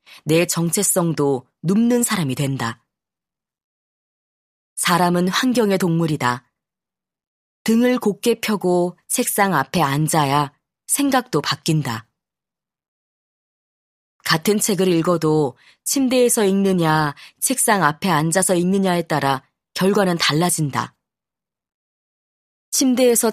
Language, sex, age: Korean, female, 20-39